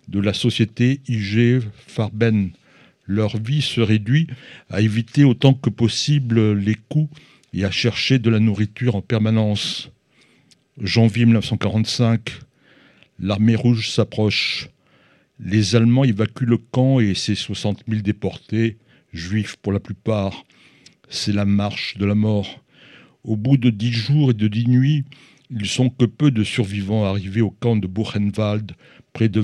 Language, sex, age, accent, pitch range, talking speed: French, male, 60-79, French, 105-125 Hz, 145 wpm